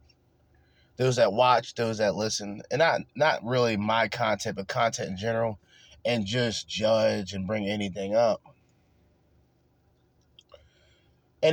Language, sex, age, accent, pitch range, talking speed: English, male, 30-49, American, 105-135 Hz, 125 wpm